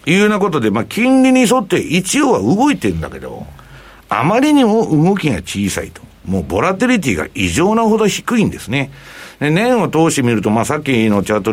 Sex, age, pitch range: male, 60-79, 110-180 Hz